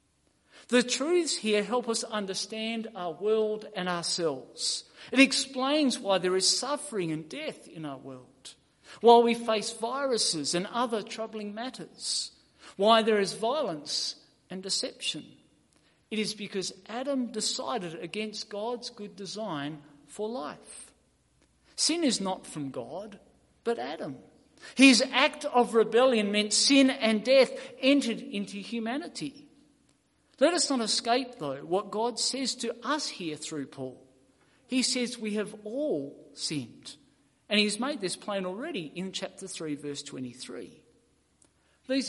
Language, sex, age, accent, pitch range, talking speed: English, male, 50-69, Australian, 190-255 Hz, 135 wpm